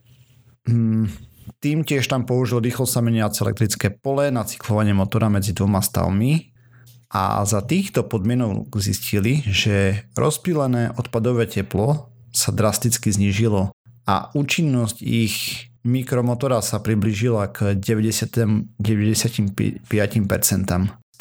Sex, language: male, Slovak